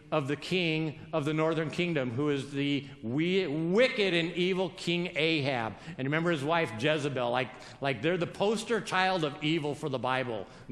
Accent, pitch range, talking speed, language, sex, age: American, 140-200 Hz, 185 wpm, English, male, 50-69